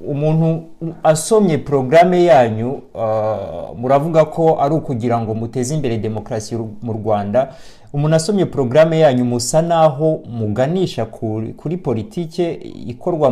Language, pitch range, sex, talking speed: Swahili, 115-155 Hz, male, 115 wpm